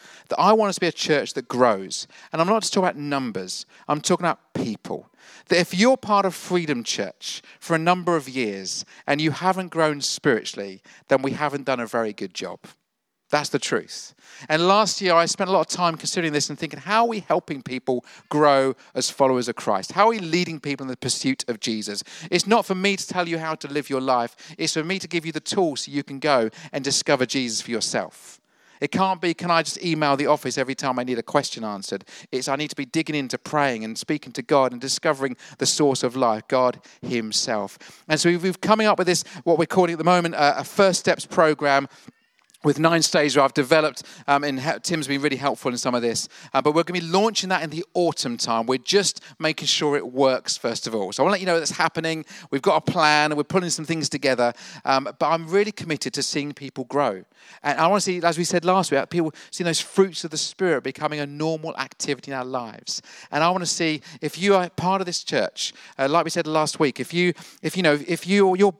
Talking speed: 245 wpm